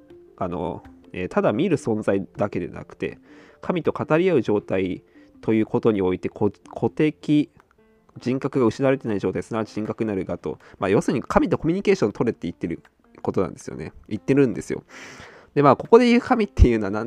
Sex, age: male, 20-39